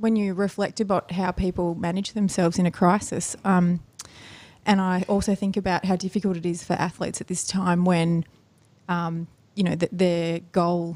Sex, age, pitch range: female, 30-49, 175-190 Hz